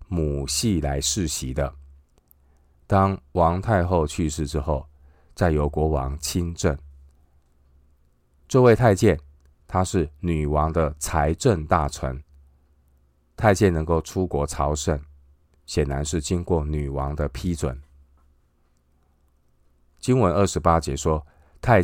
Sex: male